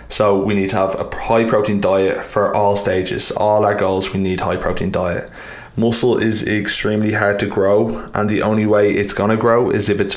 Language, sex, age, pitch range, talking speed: English, male, 20-39, 95-105 Hz, 210 wpm